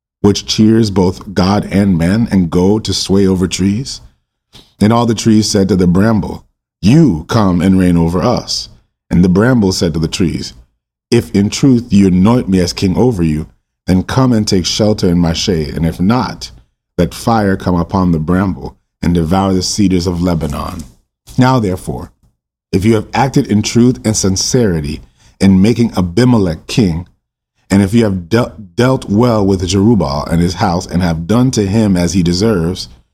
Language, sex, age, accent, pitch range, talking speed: English, male, 30-49, American, 85-110 Hz, 180 wpm